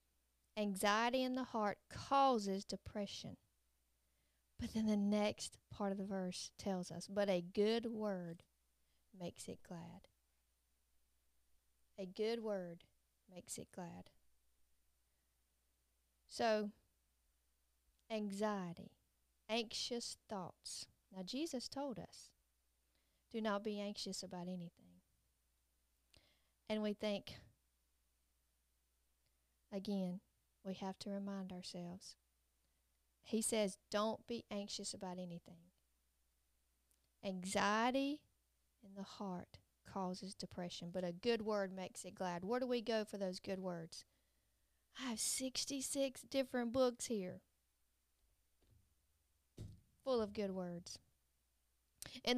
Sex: female